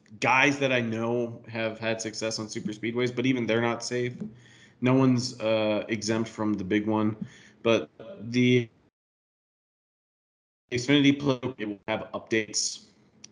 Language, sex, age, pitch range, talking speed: English, male, 30-49, 110-125 Hz, 130 wpm